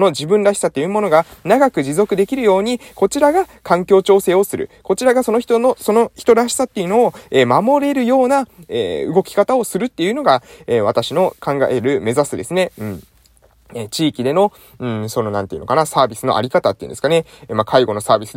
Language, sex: Japanese, male